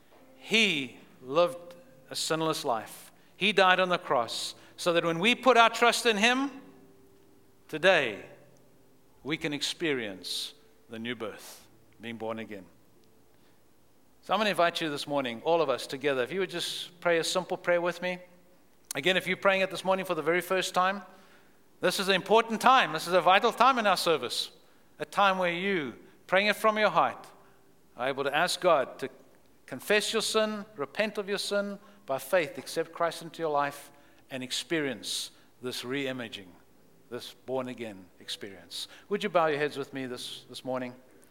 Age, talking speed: 60-79, 175 wpm